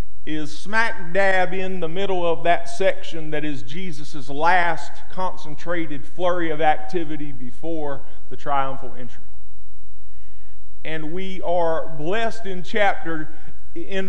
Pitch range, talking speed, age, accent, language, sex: 145-190 Hz, 120 wpm, 40-59, American, English, male